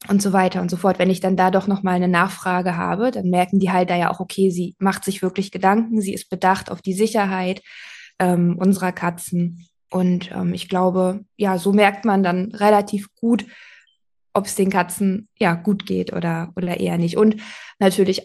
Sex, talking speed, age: female, 195 wpm, 20-39